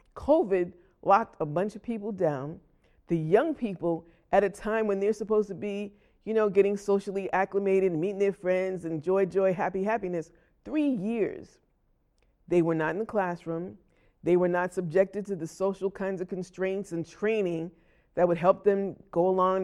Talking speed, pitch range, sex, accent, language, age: 175 wpm, 175-210 Hz, female, American, English, 50-69